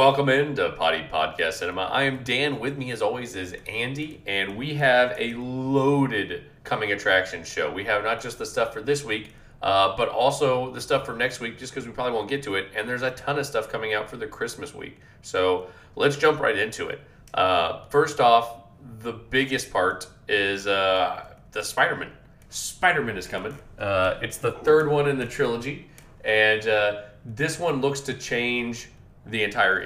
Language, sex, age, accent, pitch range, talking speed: English, male, 30-49, American, 105-135 Hz, 195 wpm